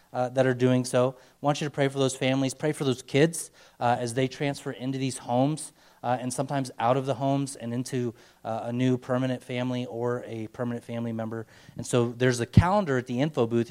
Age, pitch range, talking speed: 30-49, 125-150 Hz, 230 wpm